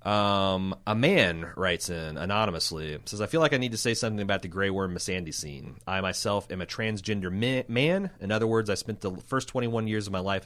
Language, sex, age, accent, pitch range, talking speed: English, male, 30-49, American, 95-115 Hz, 230 wpm